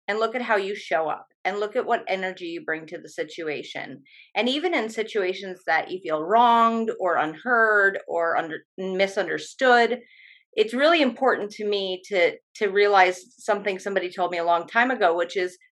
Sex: female